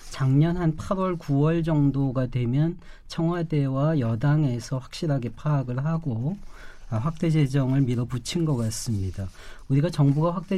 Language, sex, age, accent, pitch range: Korean, male, 40-59, native, 125-160 Hz